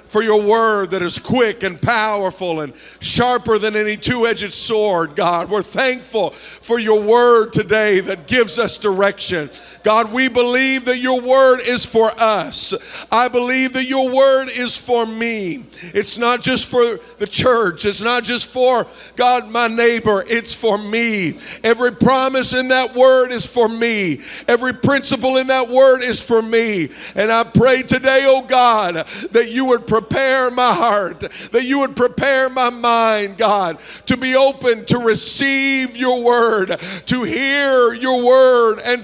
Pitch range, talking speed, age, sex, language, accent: 220-255 Hz, 160 wpm, 50-69, male, English, American